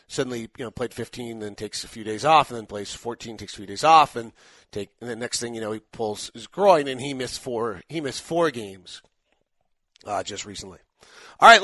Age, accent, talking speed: 40-59, American, 230 wpm